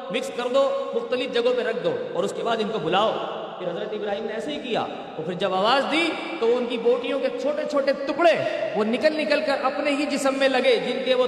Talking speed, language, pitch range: 120 wpm, Urdu, 215-285 Hz